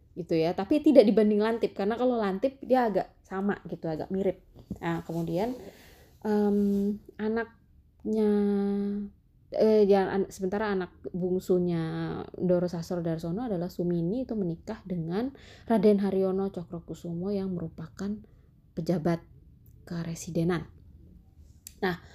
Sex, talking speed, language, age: female, 110 wpm, Indonesian, 20-39